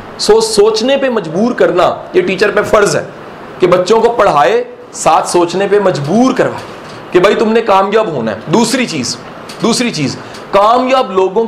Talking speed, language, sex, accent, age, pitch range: 160 wpm, English, male, Indian, 40-59, 185-235 Hz